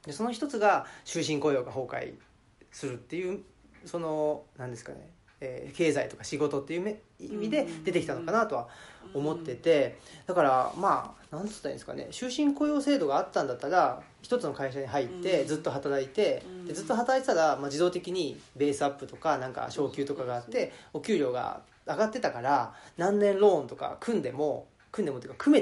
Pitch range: 140-210 Hz